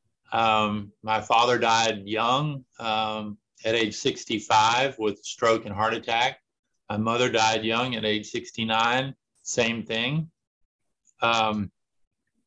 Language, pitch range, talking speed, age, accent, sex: English, 110-125 Hz, 115 wpm, 50-69, American, male